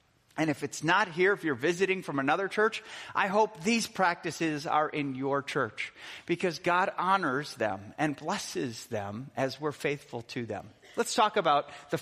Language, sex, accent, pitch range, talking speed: English, male, American, 140-205 Hz, 175 wpm